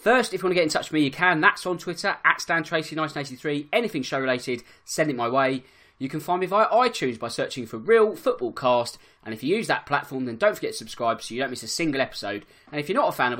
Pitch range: 130-200 Hz